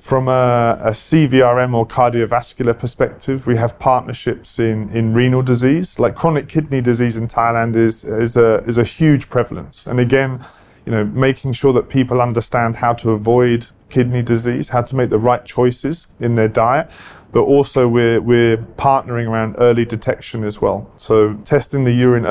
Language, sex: Thai, male